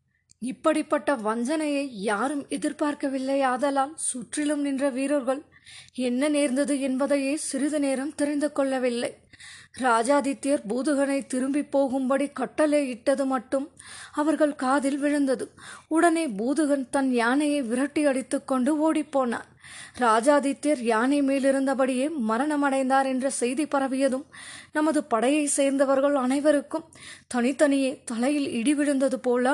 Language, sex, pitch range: Tamil, female, 265-290 Hz